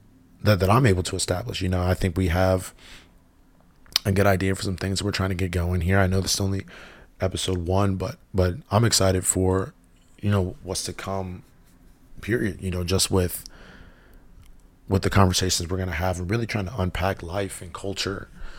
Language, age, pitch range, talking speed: English, 20-39, 90-100 Hz, 195 wpm